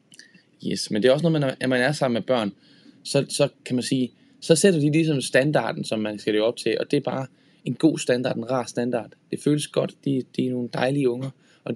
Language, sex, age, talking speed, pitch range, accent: Danish, male, 10-29, 260 wpm, 120-150 Hz, native